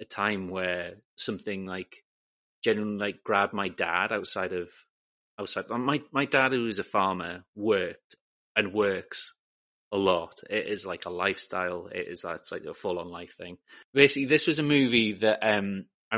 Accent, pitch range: British, 100-130 Hz